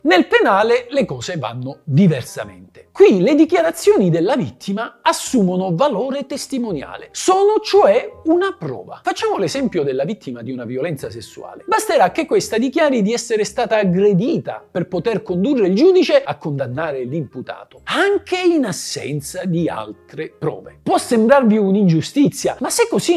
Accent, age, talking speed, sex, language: native, 50-69, 140 wpm, male, Italian